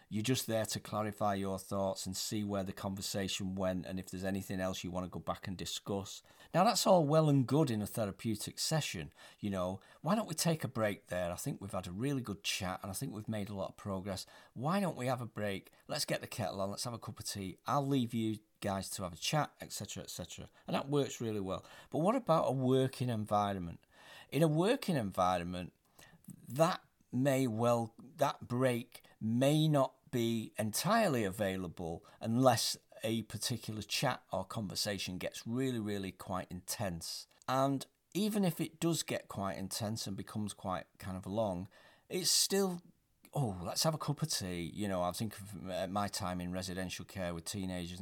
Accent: British